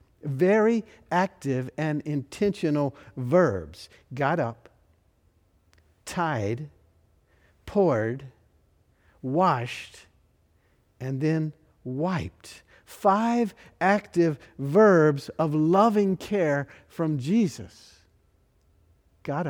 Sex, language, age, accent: male, English, 60-79, American